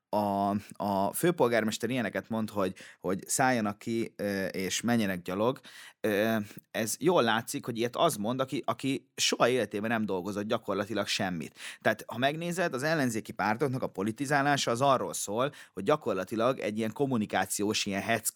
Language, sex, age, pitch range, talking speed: Hungarian, male, 30-49, 110-140 Hz, 145 wpm